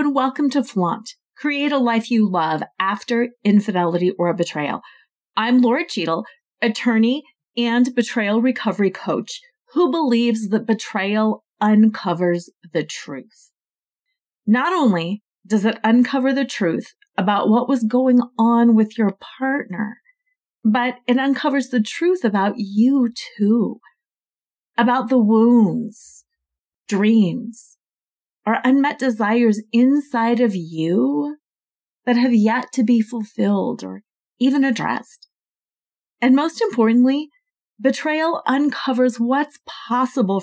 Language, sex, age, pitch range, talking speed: English, female, 40-59, 205-265 Hz, 115 wpm